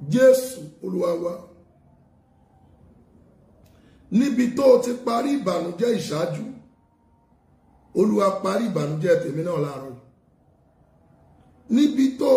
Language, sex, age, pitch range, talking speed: English, male, 50-69, 190-275 Hz, 70 wpm